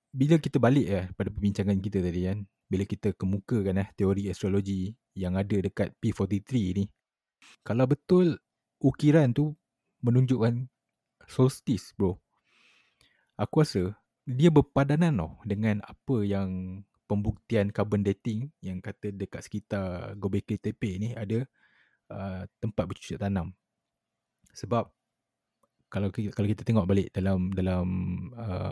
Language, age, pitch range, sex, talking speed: Malay, 20-39, 95-115 Hz, male, 130 wpm